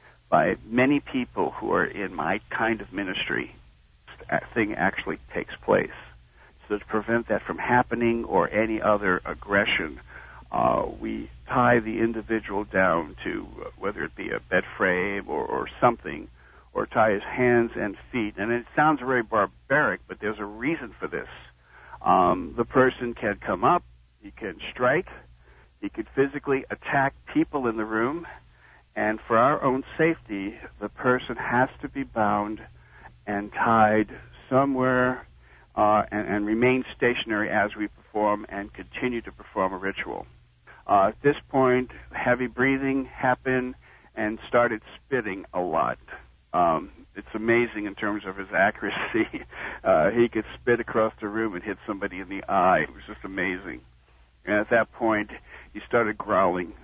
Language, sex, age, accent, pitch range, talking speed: English, male, 60-79, American, 100-125 Hz, 155 wpm